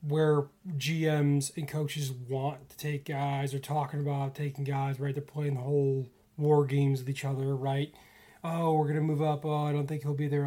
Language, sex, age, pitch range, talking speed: English, male, 20-39, 140-155 Hz, 210 wpm